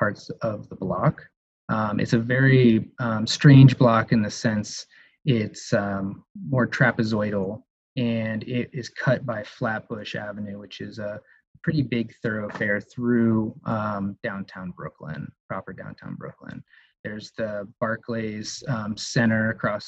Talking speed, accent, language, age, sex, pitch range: 135 wpm, American, English, 20-39, male, 105-125 Hz